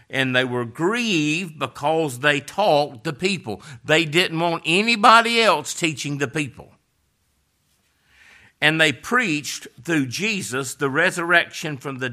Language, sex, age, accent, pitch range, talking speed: English, male, 50-69, American, 130-170 Hz, 130 wpm